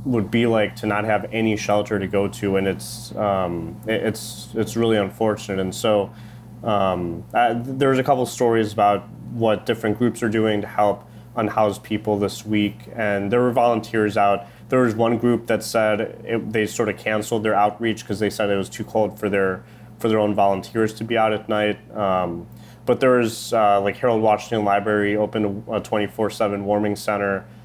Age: 20-39